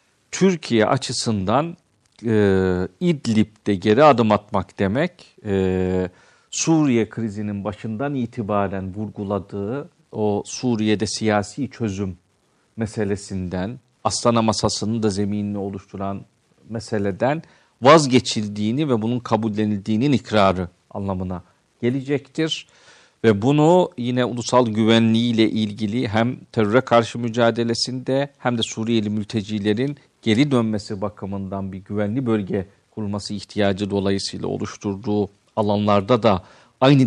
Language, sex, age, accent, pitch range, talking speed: Turkish, male, 50-69, native, 100-125 Hz, 95 wpm